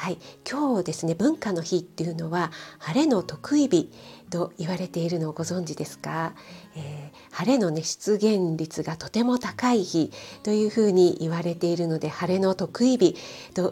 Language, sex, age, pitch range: Japanese, female, 40-59, 170-230 Hz